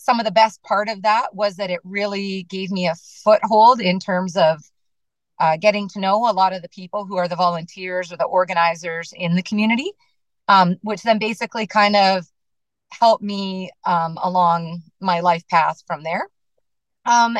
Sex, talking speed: female, 185 wpm